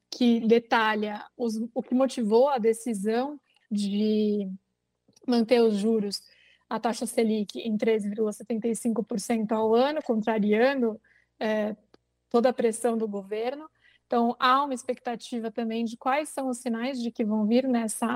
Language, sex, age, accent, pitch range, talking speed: Portuguese, female, 20-39, Brazilian, 225-270 Hz, 130 wpm